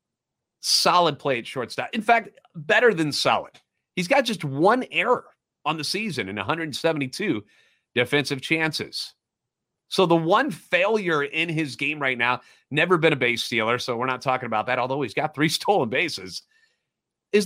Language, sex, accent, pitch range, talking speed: English, male, American, 140-205 Hz, 165 wpm